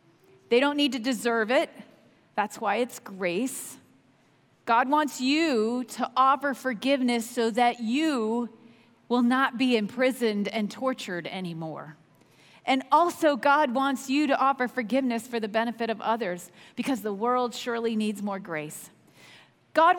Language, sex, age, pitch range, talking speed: English, female, 40-59, 200-265 Hz, 140 wpm